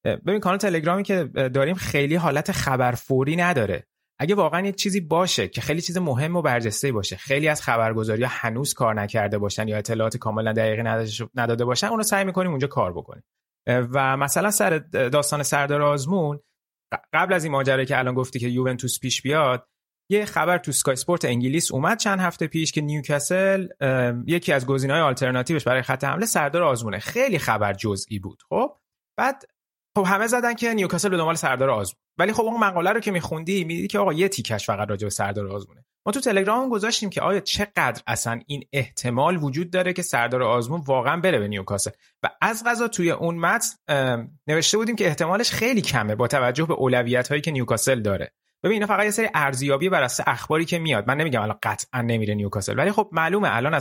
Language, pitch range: Persian, 125-180 Hz